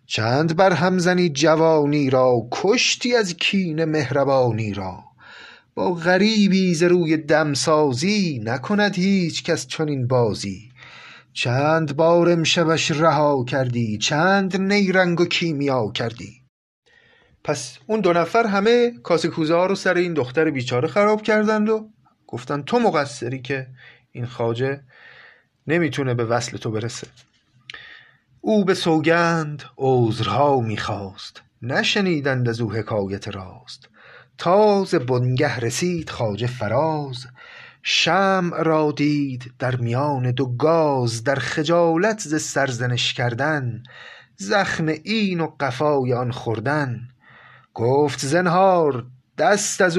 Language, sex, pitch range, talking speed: Persian, male, 125-175 Hz, 110 wpm